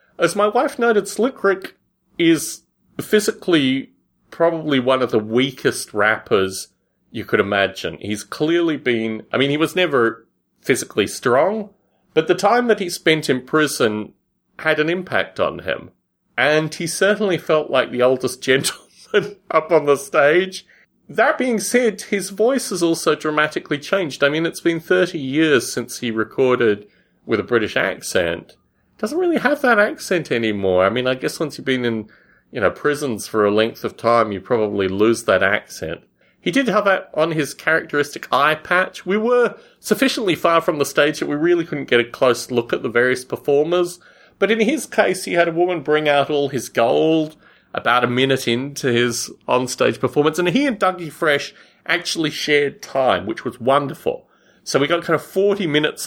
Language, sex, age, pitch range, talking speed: English, male, 30-49, 125-185 Hz, 180 wpm